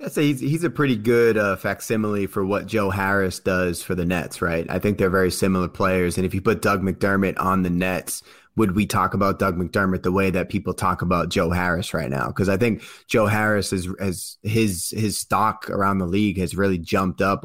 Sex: male